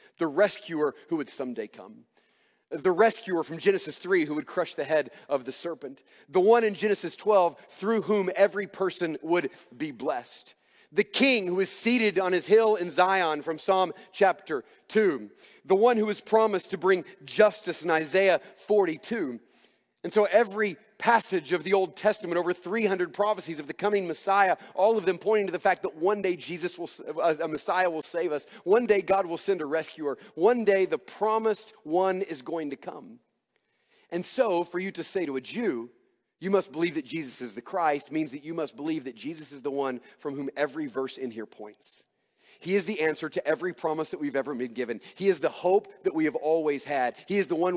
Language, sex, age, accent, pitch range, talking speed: English, male, 40-59, American, 155-205 Hz, 205 wpm